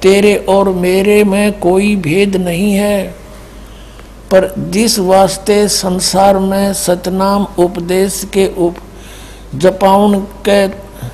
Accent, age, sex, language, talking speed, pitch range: native, 60-79, male, Hindi, 100 wpm, 180-200 Hz